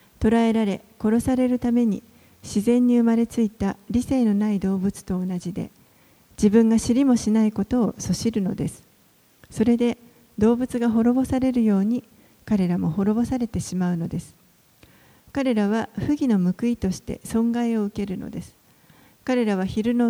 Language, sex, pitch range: Japanese, female, 195-235 Hz